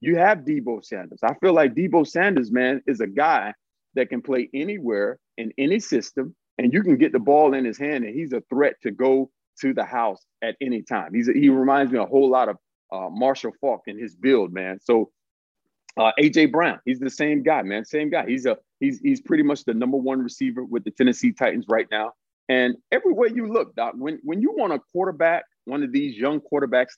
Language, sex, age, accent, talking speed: English, male, 40-59, American, 220 wpm